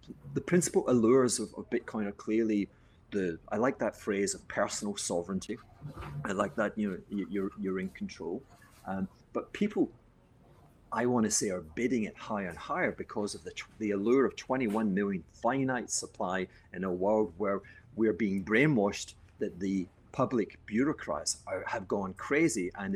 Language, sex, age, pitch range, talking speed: English, male, 30-49, 100-115 Hz, 165 wpm